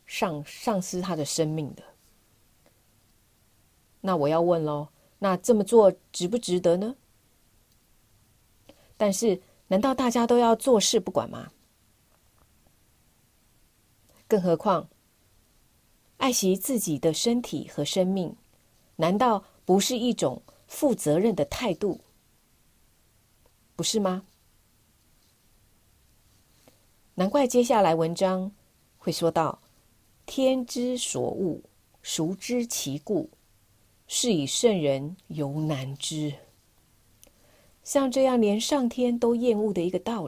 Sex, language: female, Chinese